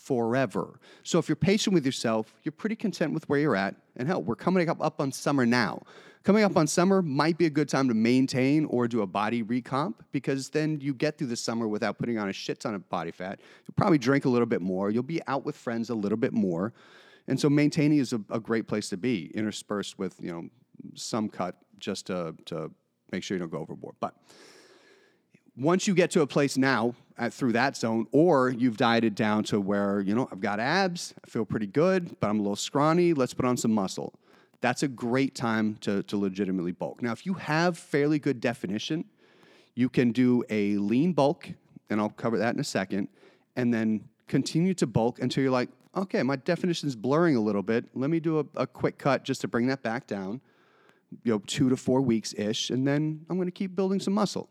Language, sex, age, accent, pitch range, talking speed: English, male, 30-49, American, 115-155 Hz, 225 wpm